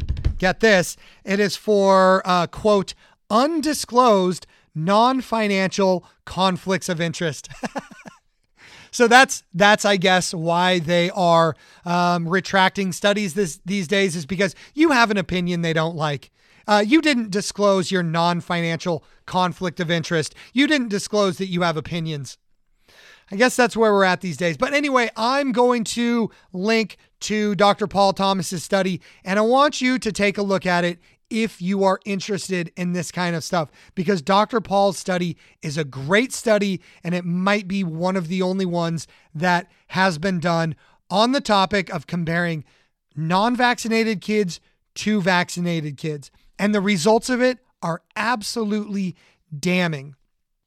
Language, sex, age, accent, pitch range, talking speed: English, male, 30-49, American, 175-210 Hz, 150 wpm